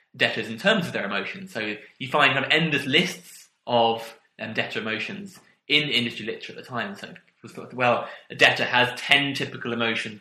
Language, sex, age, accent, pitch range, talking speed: English, male, 20-39, British, 115-150 Hz, 195 wpm